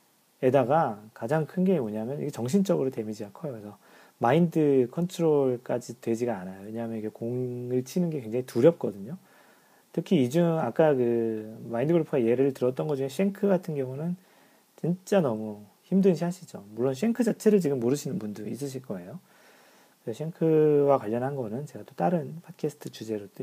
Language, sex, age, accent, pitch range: Korean, male, 40-59, native, 115-175 Hz